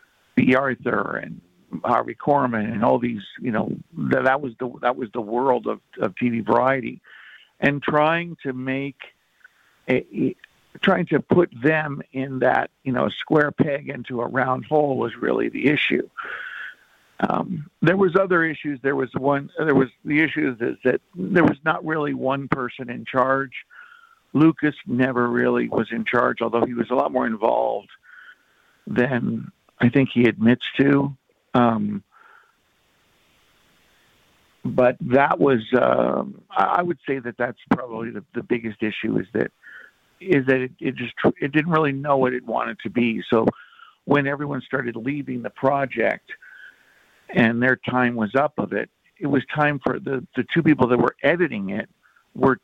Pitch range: 120-155 Hz